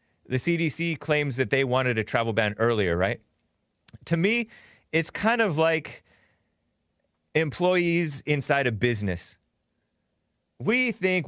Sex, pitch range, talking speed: male, 110-150 Hz, 120 wpm